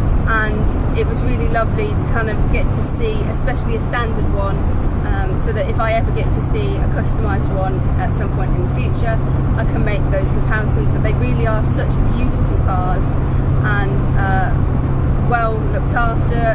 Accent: British